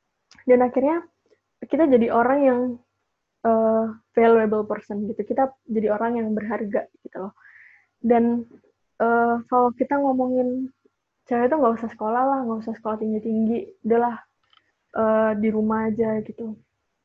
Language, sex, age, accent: Indonesian, female, 20-39, native